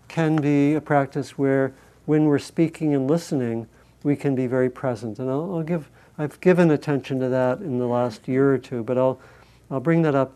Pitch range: 130-150 Hz